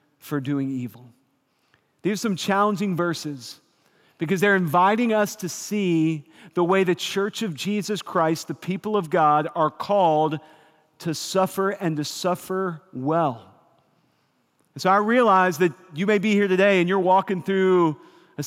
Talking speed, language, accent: 155 wpm, English, American